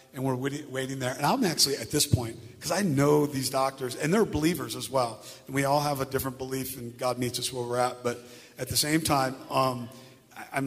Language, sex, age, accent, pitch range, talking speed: English, male, 40-59, American, 120-130 Hz, 230 wpm